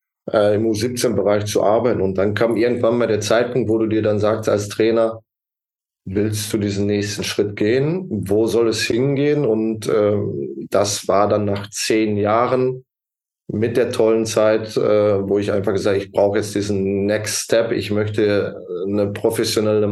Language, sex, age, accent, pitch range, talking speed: German, male, 20-39, German, 105-115 Hz, 165 wpm